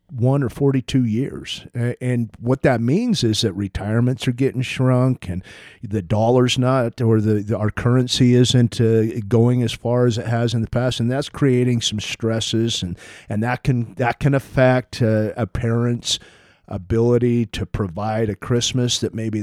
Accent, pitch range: American, 110-130 Hz